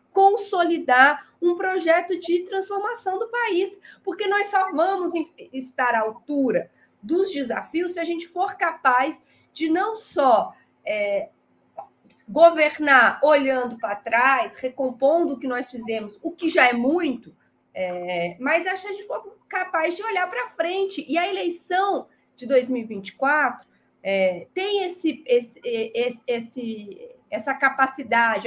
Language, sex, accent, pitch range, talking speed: Portuguese, female, Brazilian, 255-345 Hz, 130 wpm